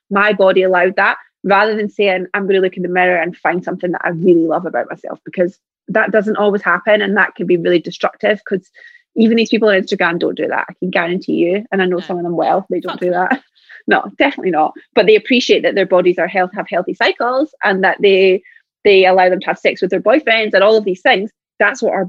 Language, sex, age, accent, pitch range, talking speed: English, female, 20-39, British, 185-225 Hz, 250 wpm